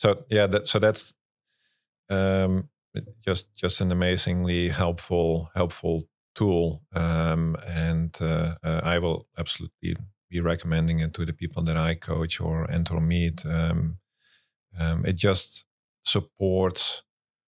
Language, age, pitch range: English, 40-59, 80-95 Hz